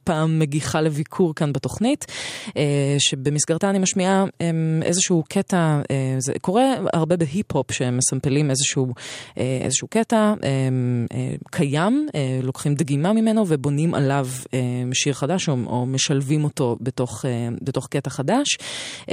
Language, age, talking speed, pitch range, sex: Hebrew, 20-39, 105 wpm, 140-185 Hz, female